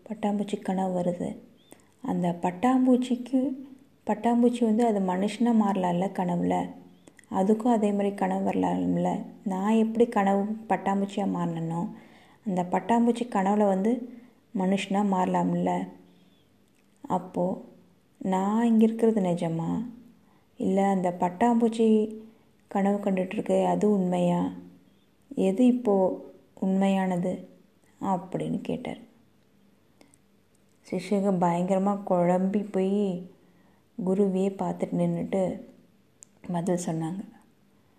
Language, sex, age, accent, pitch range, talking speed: Tamil, female, 20-39, native, 185-225 Hz, 85 wpm